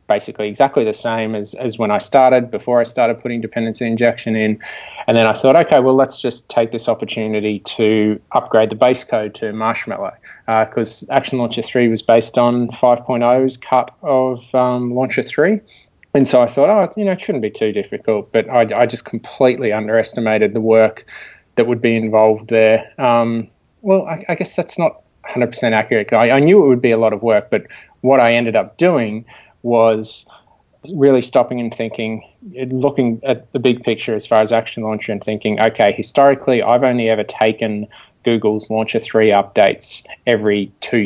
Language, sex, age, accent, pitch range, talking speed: English, male, 20-39, Australian, 110-130 Hz, 185 wpm